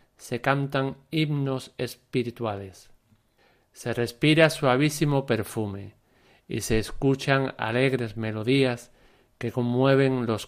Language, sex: Spanish, male